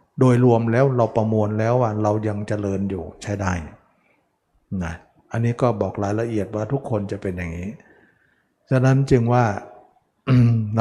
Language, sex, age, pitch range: Thai, male, 60-79, 105-125 Hz